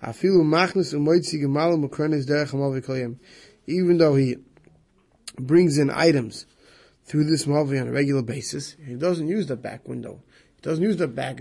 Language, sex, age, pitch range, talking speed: English, male, 20-39, 135-170 Hz, 125 wpm